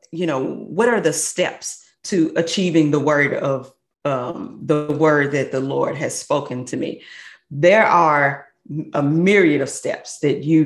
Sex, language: female, English